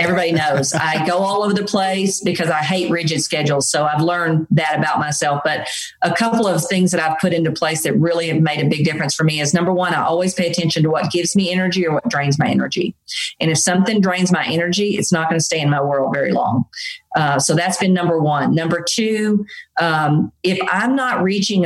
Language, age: English, 40-59